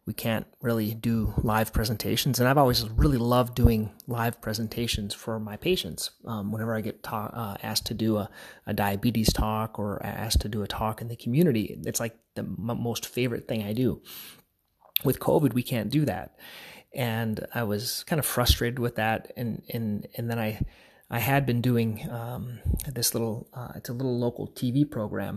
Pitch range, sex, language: 110-125 Hz, male, English